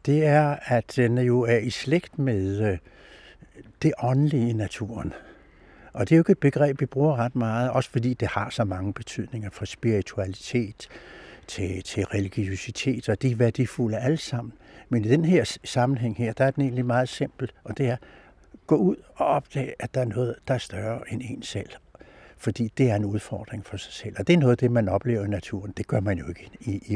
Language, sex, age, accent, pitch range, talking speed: Danish, male, 60-79, native, 105-130 Hz, 210 wpm